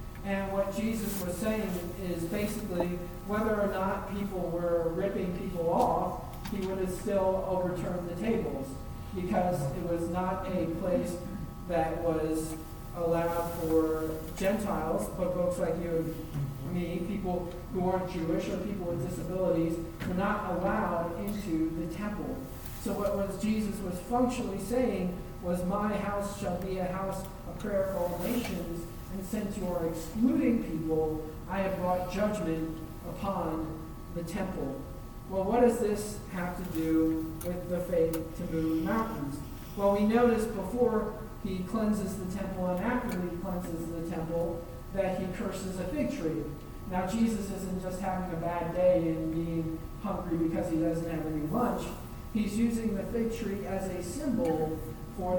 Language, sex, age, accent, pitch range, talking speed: English, male, 40-59, American, 165-200 Hz, 155 wpm